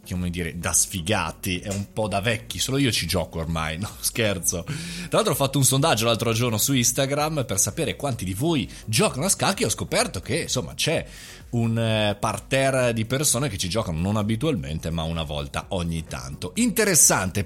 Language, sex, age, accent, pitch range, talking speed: Italian, male, 30-49, native, 100-145 Hz, 185 wpm